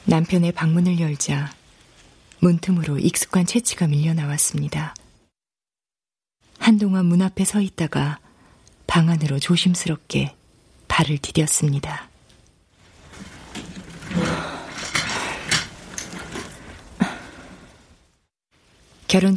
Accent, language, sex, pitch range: native, Korean, female, 145-180 Hz